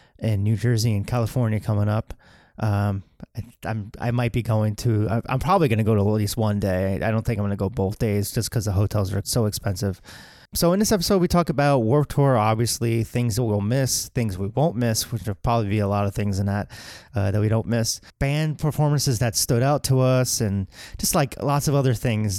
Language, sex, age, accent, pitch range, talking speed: English, male, 30-49, American, 100-125 Hz, 235 wpm